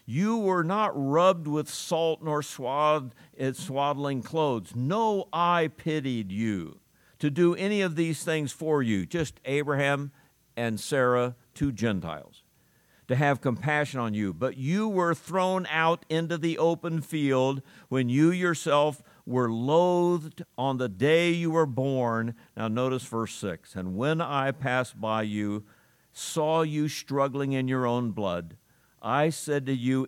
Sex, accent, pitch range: male, American, 105-155 Hz